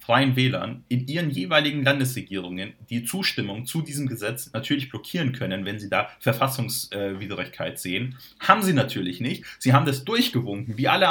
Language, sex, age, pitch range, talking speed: German, male, 30-49, 115-155 Hz, 155 wpm